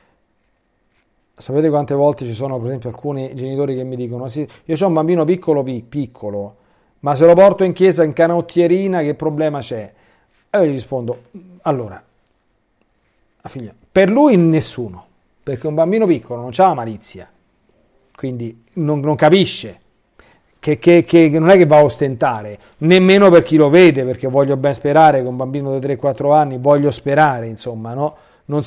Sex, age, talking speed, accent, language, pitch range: male, 40-59, 165 wpm, native, Italian, 125-170 Hz